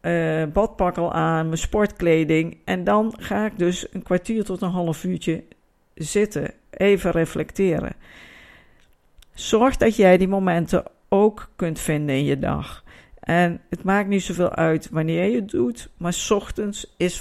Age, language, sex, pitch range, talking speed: 50-69, Dutch, female, 160-210 Hz, 150 wpm